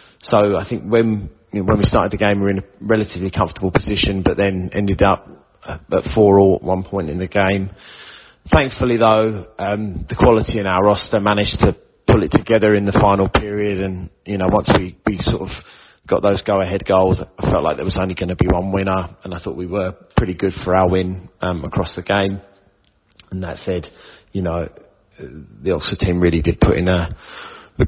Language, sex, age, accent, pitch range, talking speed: English, male, 30-49, British, 95-105 Hz, 215 wpm